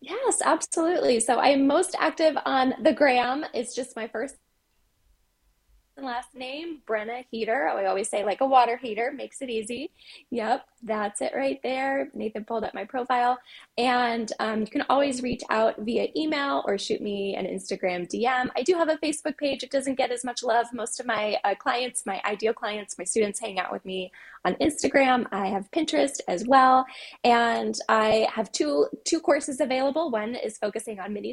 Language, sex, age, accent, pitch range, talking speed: English, female, 10-29, American, 200-255 Hz, 190 wpm